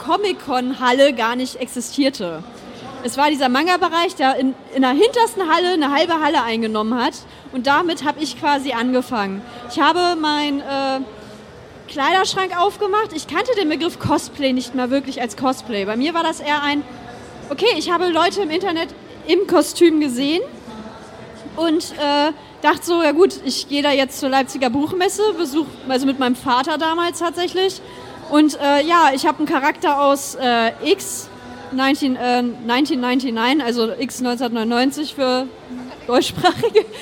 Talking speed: 145 wpm